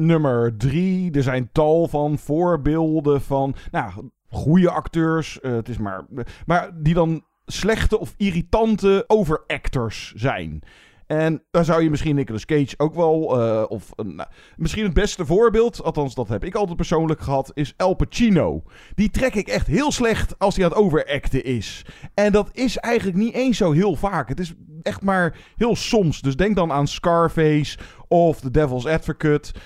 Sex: male